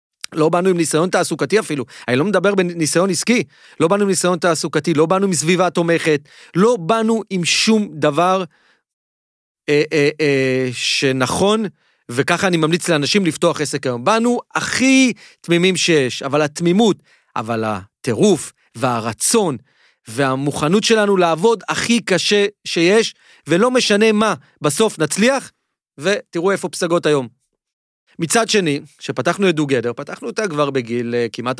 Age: 40-59